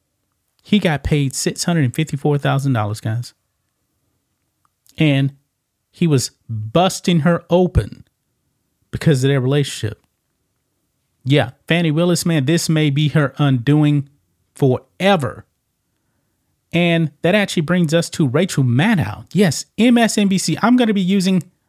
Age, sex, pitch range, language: 30-49, male, 130-165 Hz, English